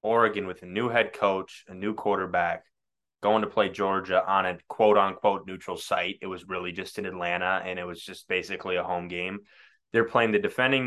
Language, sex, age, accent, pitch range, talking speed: English, male, 20-39, American, 95-115 Hz, 200 wpm